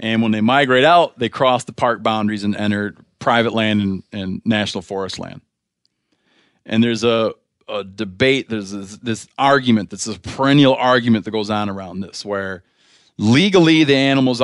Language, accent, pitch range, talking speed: English, American, 105-130 Hz, 170 wpm